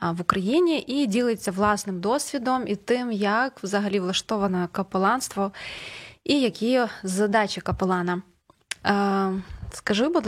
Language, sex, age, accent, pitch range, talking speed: Ukrainian, female, 20-39, native, 190-240 Hz, 105 wpm